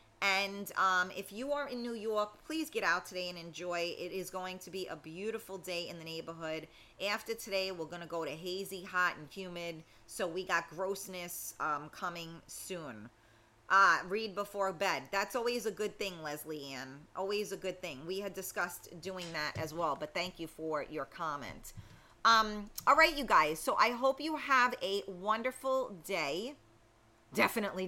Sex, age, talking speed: female, 30-49, 185 wpm